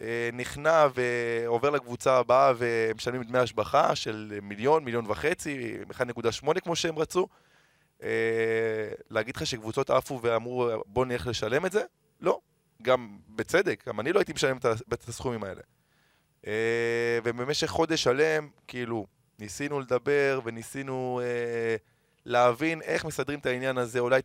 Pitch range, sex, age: 115-145 Hz, male, 20-39